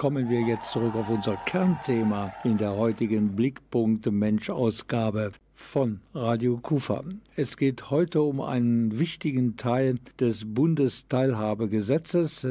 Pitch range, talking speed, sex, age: 110-135 Hz, 110 wpm, male, 50-69